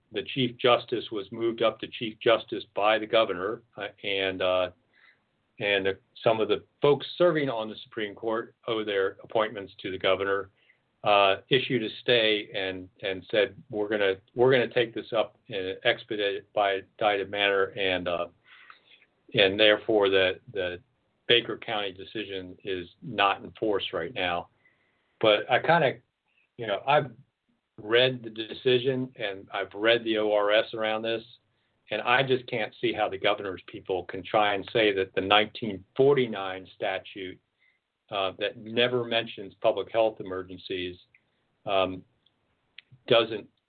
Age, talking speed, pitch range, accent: 50-69, 150 wpm, 95-120 Hz, American